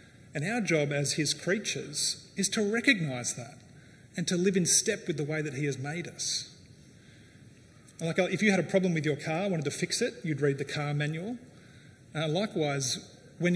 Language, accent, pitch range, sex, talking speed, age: English, Australian, 140-175 Hz, male, 195 wpm, 30-49